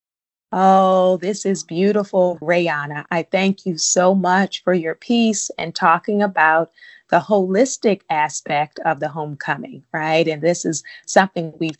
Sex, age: female, 30-49